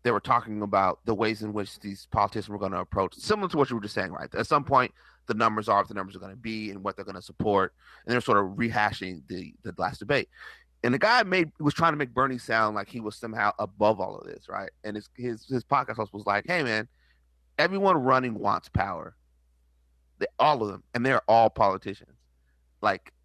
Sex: male